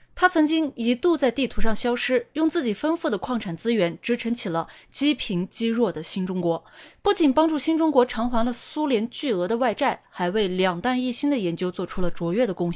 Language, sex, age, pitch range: Chinese, female, 20-39, 185-275 Hz